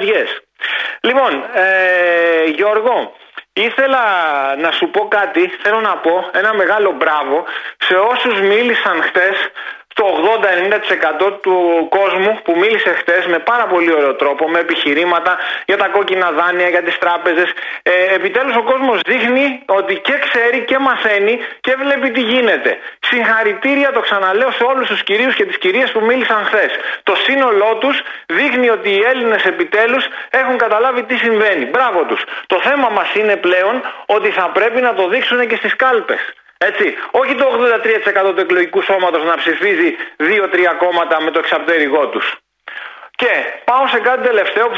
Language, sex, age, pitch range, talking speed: Greek, male, 30-49, 180-255 Hz, 155 wpm